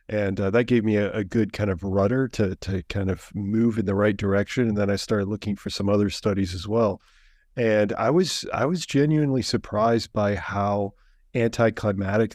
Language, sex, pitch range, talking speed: English, male, 100-120 Hz, 200 wpm